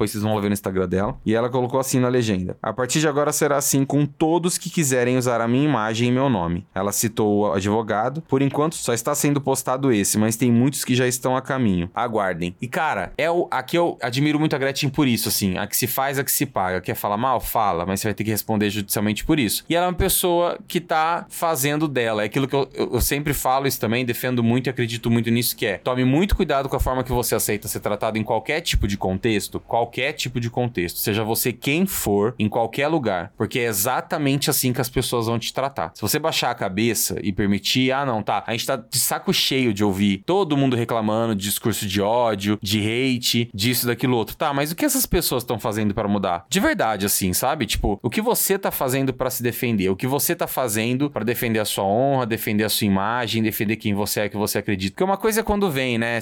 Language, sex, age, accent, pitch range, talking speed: Portuguese, male, 20-39, Brazilian, 105-140 Hz, 245 wpm